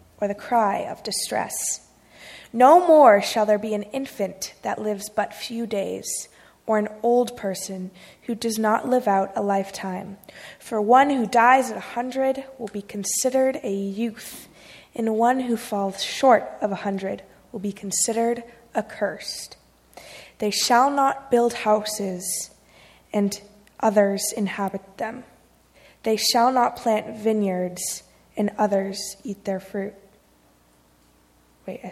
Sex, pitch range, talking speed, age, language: female, 200-240 Hz, 135 wpm, 20-39, English